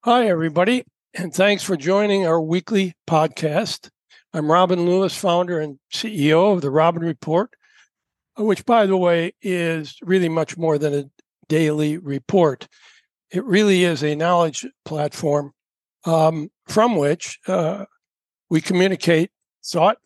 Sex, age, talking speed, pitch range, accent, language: male, 60-79, 130 wpm, 155-190 Hz, American, English